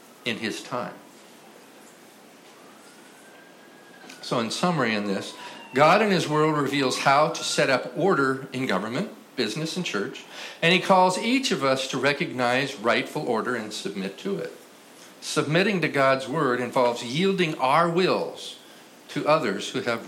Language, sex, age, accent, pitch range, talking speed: English, male, 50-69, American, 115-160 Hz, 145 wpm